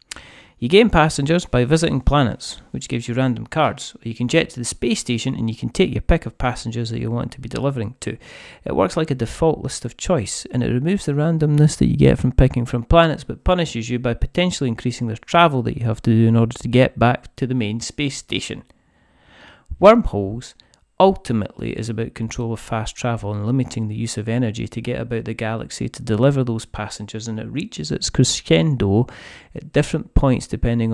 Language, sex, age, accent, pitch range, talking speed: English, male, 30-49, British, 115-145 Hz, 210 wpm